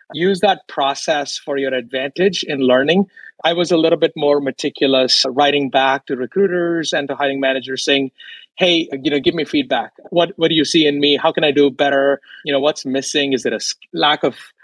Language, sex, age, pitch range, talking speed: English, male, 30-49, 140-180 Hz, 210 wpm